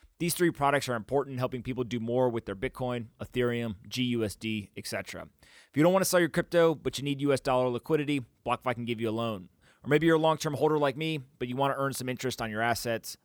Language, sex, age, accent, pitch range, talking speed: English, male, 30-49, American, 115-145 Hz, 245 wpm